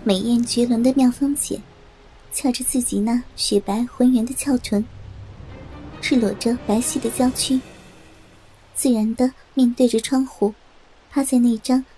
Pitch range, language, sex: 215-265 Hz, Chinese, male